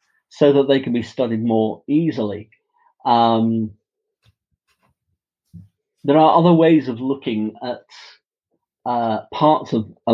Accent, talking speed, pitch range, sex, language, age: British, 120 wpm, 115-165 Hz, male, English, 40-59